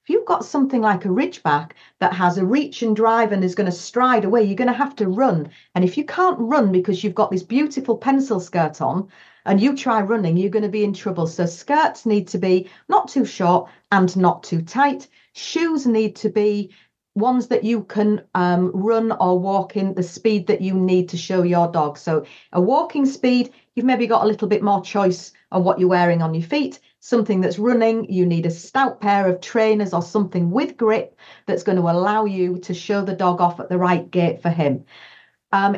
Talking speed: 220 wpm